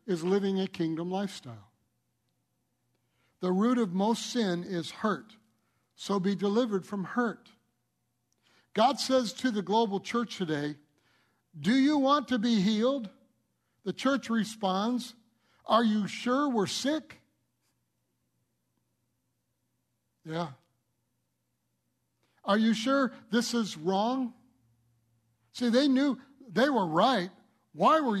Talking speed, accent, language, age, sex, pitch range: 115 wpm, American, English, 60-79, male, 150-230 Hz